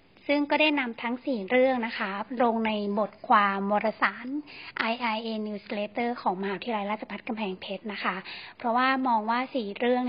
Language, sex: Thai, female